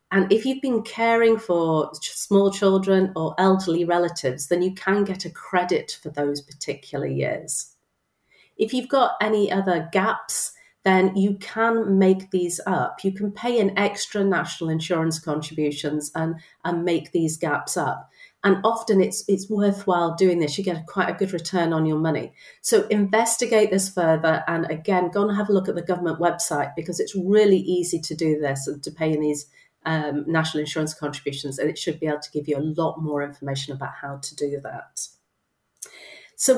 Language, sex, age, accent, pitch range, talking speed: English, female, 40-59, British, 155-200 Hz, 185 wpm